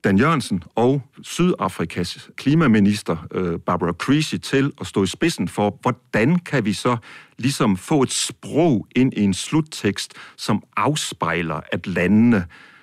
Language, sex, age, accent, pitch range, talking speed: Danish, male, 60-79, native, 100-140 Hz, 135 wpm